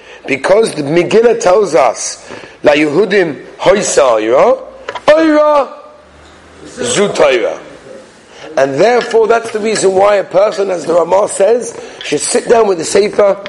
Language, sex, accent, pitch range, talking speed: English, male, British, 185-295 Hz, 130 wpm